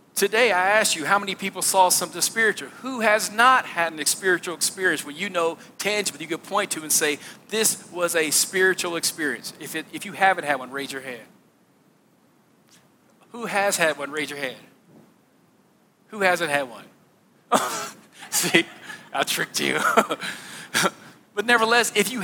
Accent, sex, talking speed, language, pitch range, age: American, male, 165 wpm, English, 180-220 Hz, 40-59